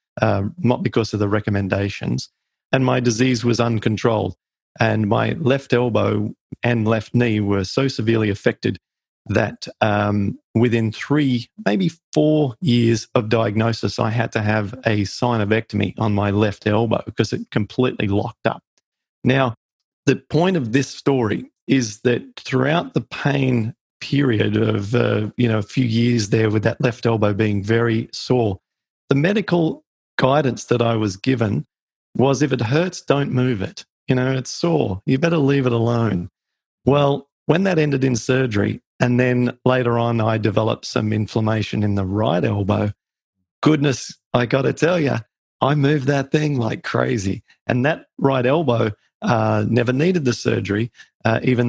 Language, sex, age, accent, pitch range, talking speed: English, male, 40-59, Australian, 110-130 Hz, 160 wpm